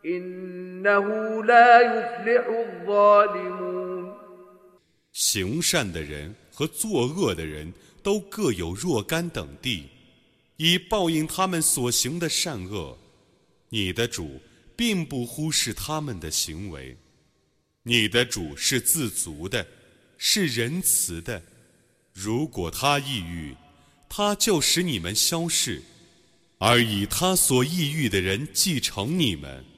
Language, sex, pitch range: Arabic, male, 100-170 Hz